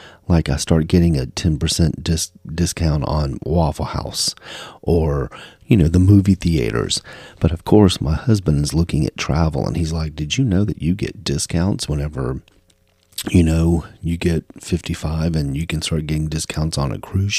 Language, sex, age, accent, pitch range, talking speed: English, male, 40-59, American, 80-95 Hz, 175 wpm